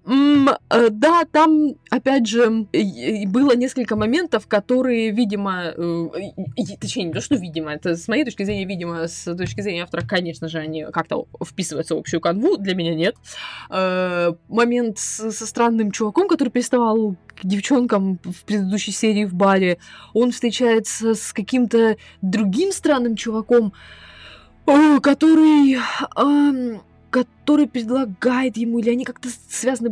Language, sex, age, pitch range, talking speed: Russian, female, 20-39, 185-245 Hz, 125 wpm